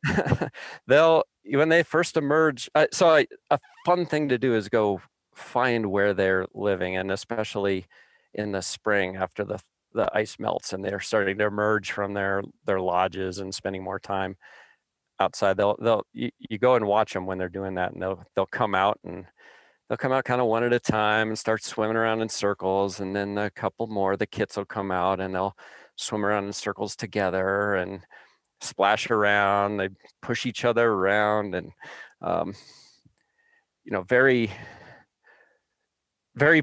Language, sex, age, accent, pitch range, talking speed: English, male, 40-59, American, 95-115 Hz, 175 wpm